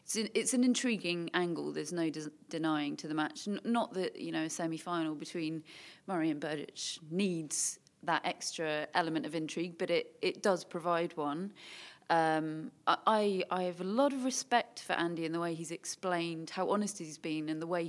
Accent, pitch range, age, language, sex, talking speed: British, 160-195 Hz, 30-49, English, female, 180 wpm